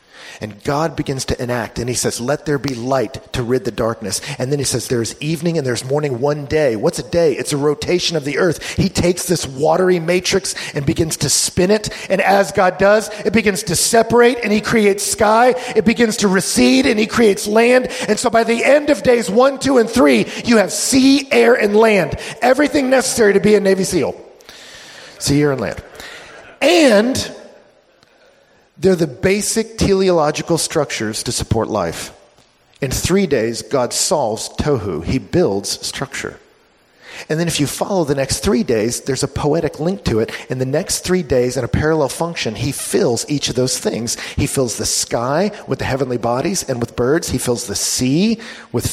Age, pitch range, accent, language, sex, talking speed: 40-59, 130-200 Hz, American, English, male, 195 wpm